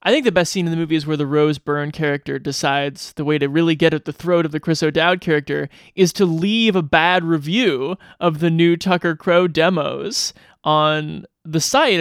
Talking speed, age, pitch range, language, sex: 215 wpm, 20-39, 150-190 Hz, English, male